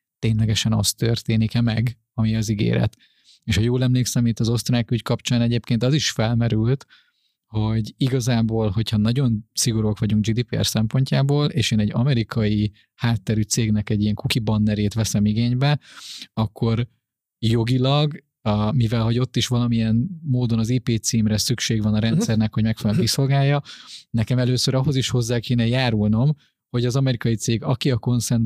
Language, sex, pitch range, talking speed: Hungarian, male, 110-125 Hz, 155 wpm